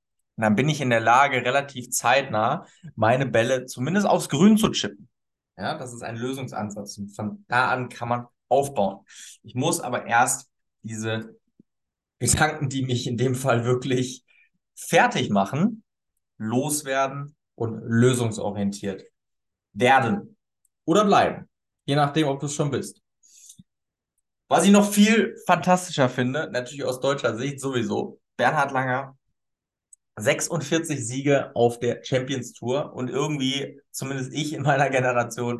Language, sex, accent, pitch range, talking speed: German, male, German, 115-140 Hz, 135 wpm